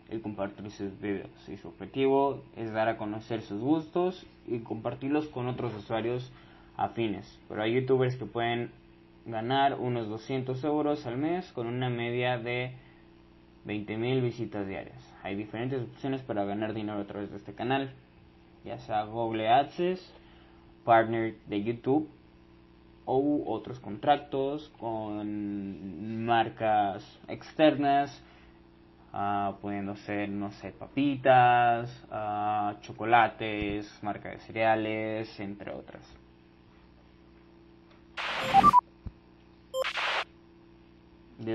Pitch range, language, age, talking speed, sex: 105-140 Hz, Croatian, 20-39, 105 wpm, male